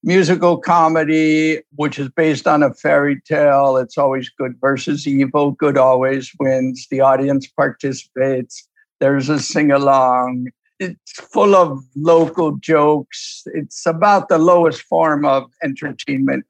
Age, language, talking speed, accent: 60-79, English, 130 wpm, American